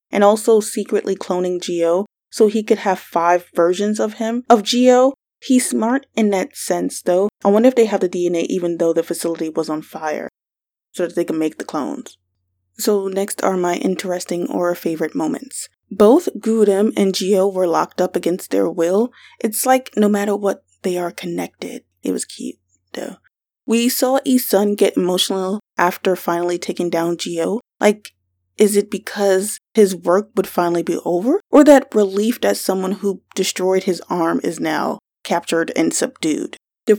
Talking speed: 175 wpm